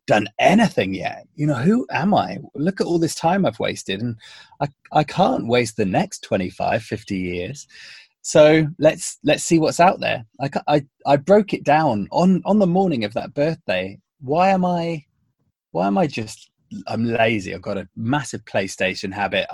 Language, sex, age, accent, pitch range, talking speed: English, male, 20-39, British, 110-150 Hz, 185 wpm